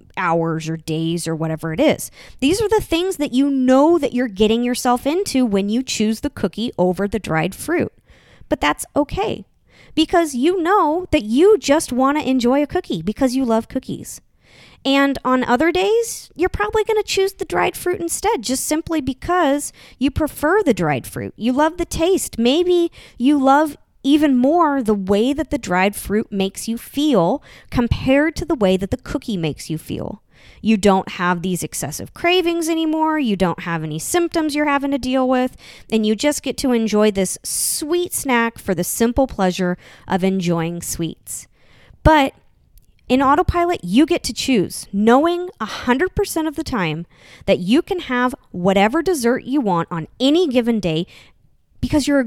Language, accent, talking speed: English, American, 175 wpm